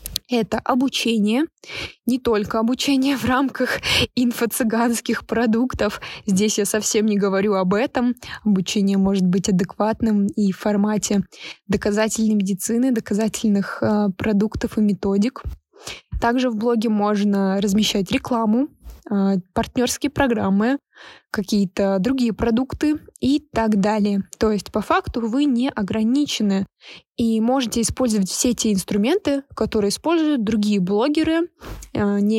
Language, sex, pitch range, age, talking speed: Russian, female, 205-250 Hz, 20-39, 115 wpm